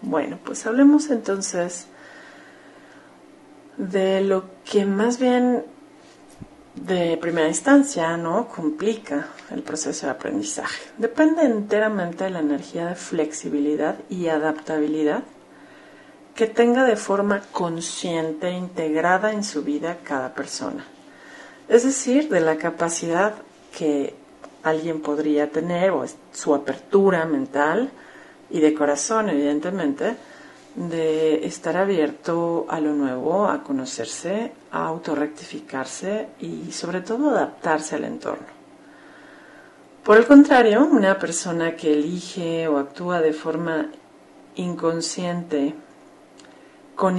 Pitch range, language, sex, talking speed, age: 160-250 Hz, Spanish, female, 105 wpm, 40-59